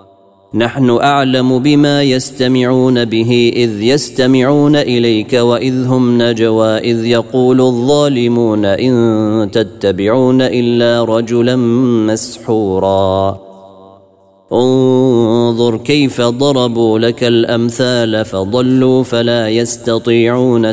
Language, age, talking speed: Arabic, 30-49, 80 wpm